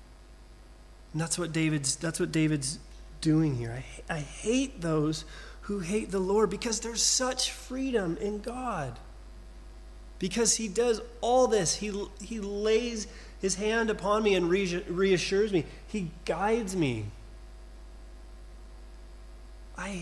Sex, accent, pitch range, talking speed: male, American, 120-200 Hz, 130 wpm